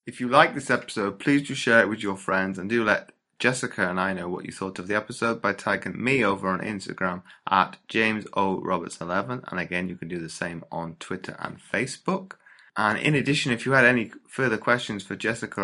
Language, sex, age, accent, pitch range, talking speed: English, male, 20-39, British, 95-120 Hz, 210 wpm